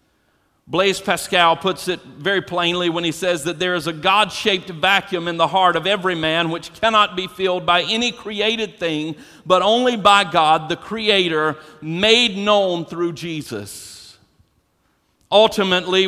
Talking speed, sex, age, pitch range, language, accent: 150 wpm, male, 50-69, 170-210 Hz, English, American